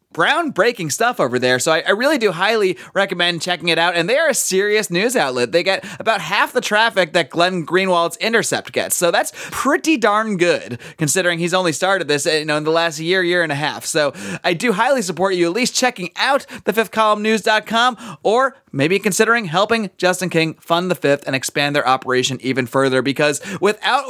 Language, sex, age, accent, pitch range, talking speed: English, male, 30-49, American, 150-210 Hz, 205 wpm